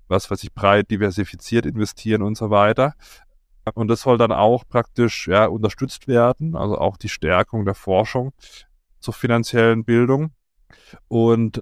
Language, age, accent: German, 30-49, German